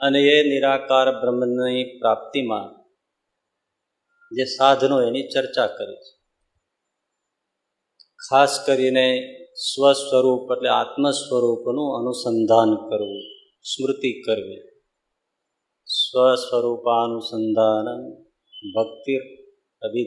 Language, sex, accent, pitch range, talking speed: Gujarati, male, native, 125-170 Hz, 65 wpm